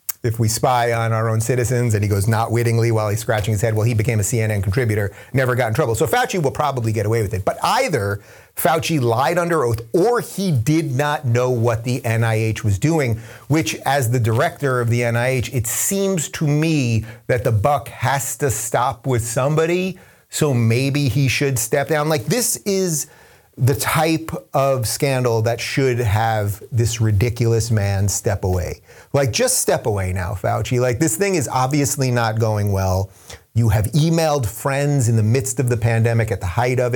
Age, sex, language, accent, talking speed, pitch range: 30-49, male, English, American, 195 wpm, 110-140 Hz